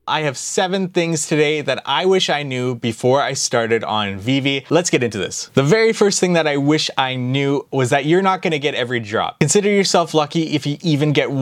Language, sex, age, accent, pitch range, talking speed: English, male, 20-39, American, 135-170 Hz, 225 wpm